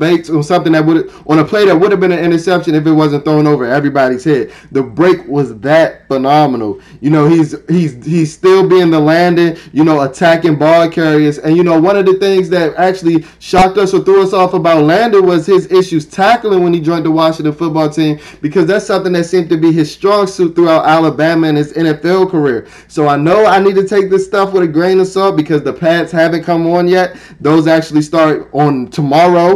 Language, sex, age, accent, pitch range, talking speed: English, male, 20-39, American, 150-180 Hz, 225 wpm